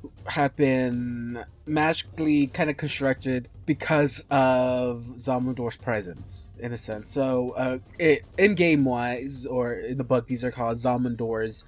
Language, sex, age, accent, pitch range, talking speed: English, male, 20-39, American, 115-145 Hz, 140 wpm